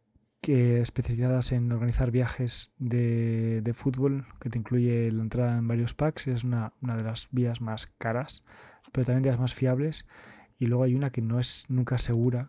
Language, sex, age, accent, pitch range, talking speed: Spanish, male, 20-39, Spanish, 115-130 Hz, 190 wpm